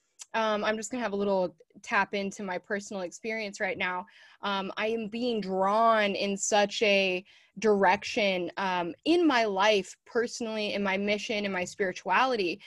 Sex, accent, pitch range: female, American, 195-235 Hz